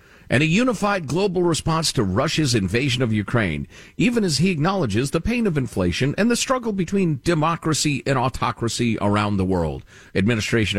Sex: male